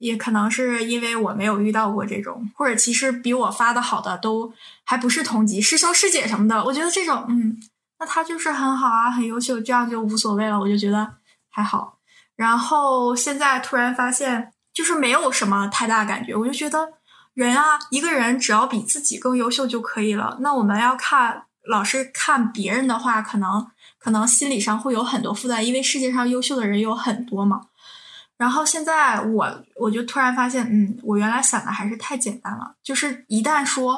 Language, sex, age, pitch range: Chinese, female, 20-39, 220-285 Hz